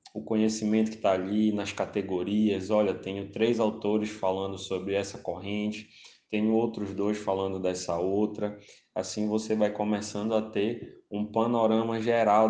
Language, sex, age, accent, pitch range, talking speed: Portuguese, male, 20-39, Brazilian, 95-115 Hz, 145 wpm